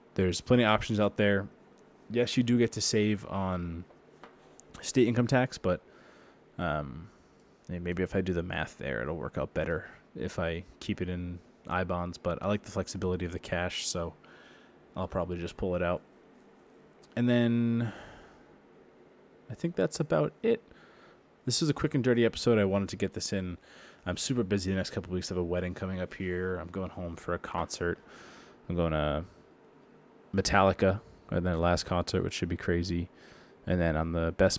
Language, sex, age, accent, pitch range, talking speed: English, male, 20-39, American, 90-110 Hz, 185 wpm